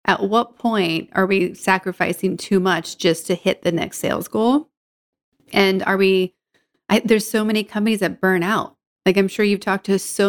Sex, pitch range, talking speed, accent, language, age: female, 175-205 Hz, 185 wpm, American, English, 30-49